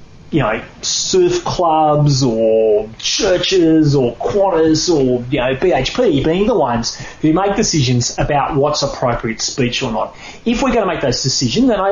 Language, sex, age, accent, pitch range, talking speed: English, male, 30-49, Australian, 120-150 Hz, 165 wpm